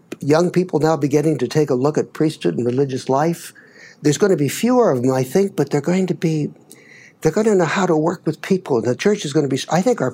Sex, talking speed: male, 265 wpm